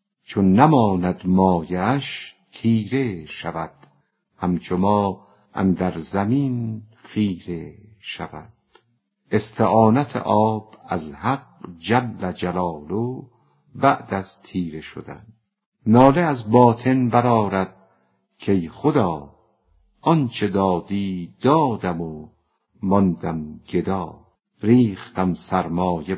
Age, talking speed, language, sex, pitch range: 50-69, 85 wpm, Persian, female, 90-120 Hz